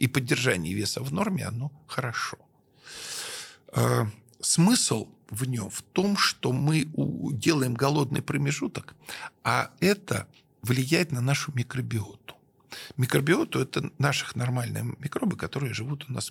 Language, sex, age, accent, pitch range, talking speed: Russian, male, 50-69, native, 120-155 Hz, 120 wpm